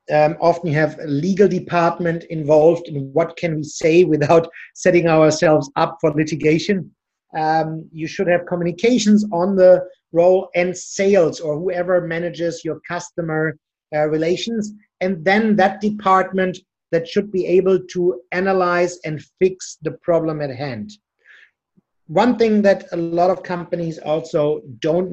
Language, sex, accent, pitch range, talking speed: English, male, German, 160-190 Hz, 145 wpm